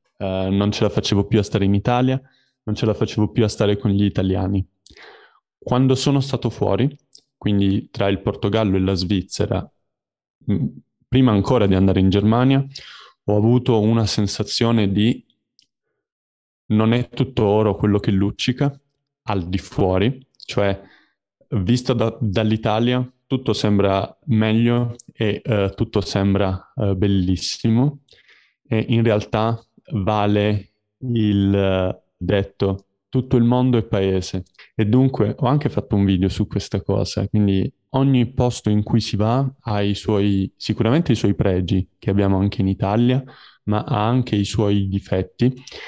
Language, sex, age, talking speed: Italian, male, 20-39, 140 wpm